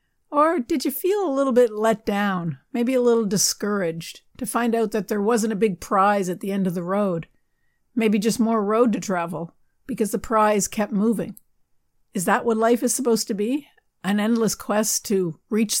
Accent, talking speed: American, 195 wpm